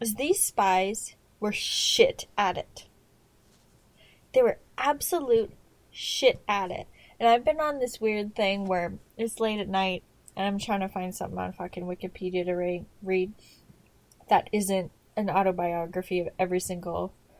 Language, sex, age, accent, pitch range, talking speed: English, female, 10-29, American, 195-270 Hz, 145 wpm